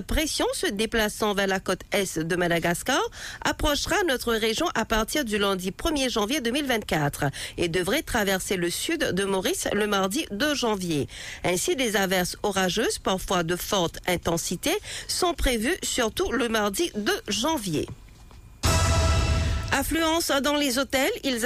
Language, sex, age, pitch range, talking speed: English, female, 50-69, 190-260 Hz, 145 wpm